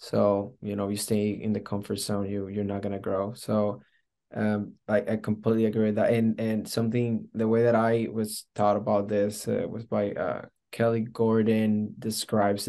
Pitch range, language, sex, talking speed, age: 105-115 Hz, English, male, 190 wpm, 20-39